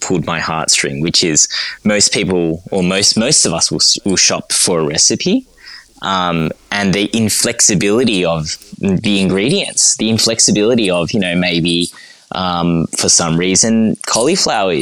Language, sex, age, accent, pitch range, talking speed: English, male, 20-39, Australian, 95-130 Hz, 145 wpm